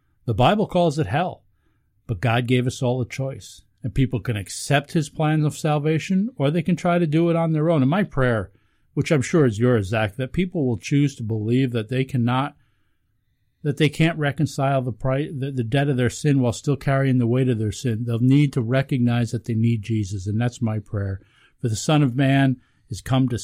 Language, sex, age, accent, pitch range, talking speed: English, male, 50-69, American, 110-140 Hz, 220 wpm